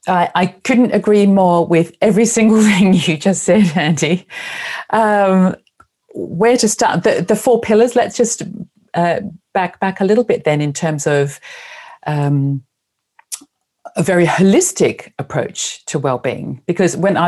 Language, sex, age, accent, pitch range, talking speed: English, female, 40-59, British, 155-200 Hz, 150 wpm